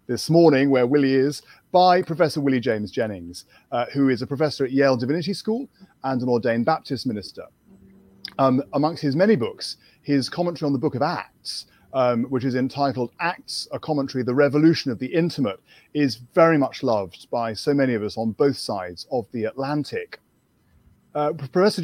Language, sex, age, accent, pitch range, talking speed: English, male, 30-49, British, 125-160 Hz, 180 wpm